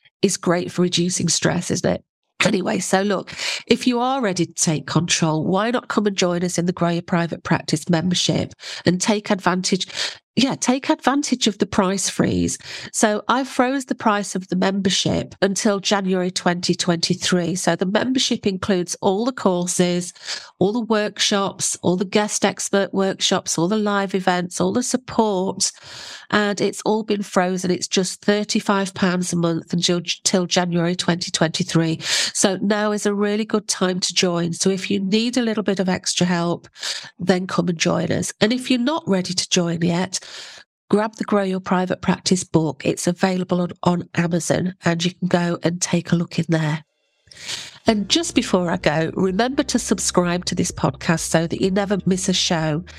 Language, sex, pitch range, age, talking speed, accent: English, female, 175-205 Hz, 40-59, 180 wpm, British